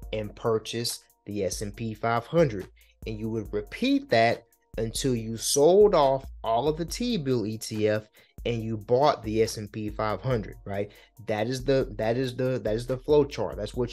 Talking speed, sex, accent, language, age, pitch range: 170 wpm, male, American, English, 20-39, 110-150 Hz